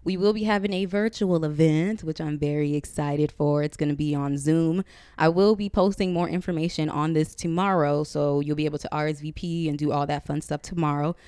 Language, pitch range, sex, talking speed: English, 145-170 Hz, female, 215 wpm